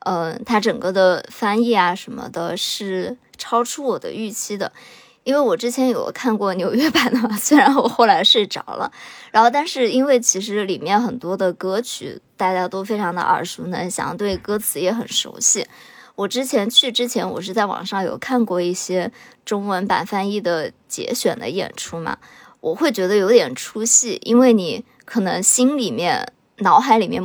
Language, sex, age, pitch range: Chinese, male, 20-39, 185-240 Hz